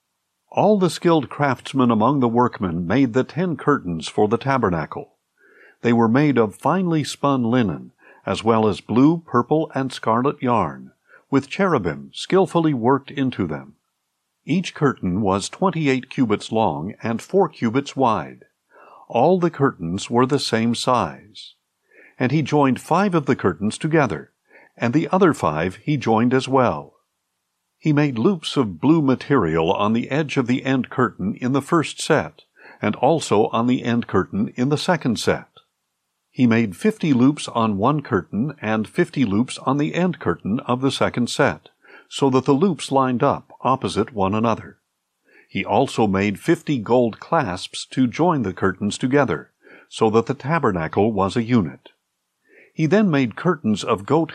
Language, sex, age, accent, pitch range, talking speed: English, male, 50-69, American, 115-150 Hz, 160 wpm